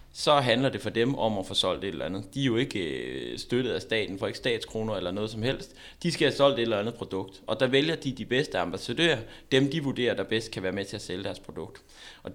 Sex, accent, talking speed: male, native, 265 wpm